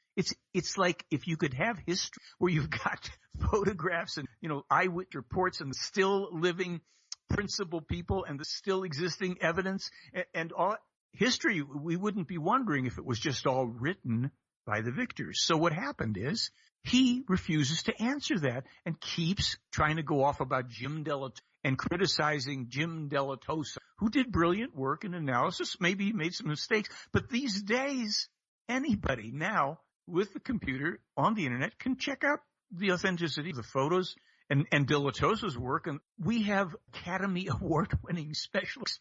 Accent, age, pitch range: American, 60-79, 145-195 Hz